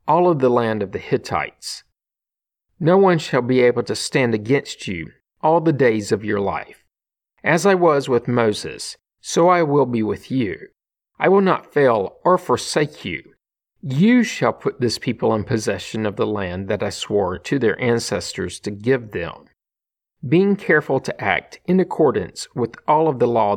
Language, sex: English, male